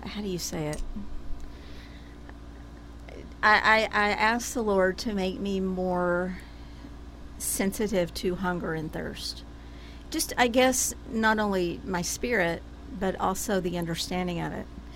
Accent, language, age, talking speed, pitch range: American, English, 50-69, 130 wpm, 160-205 Hz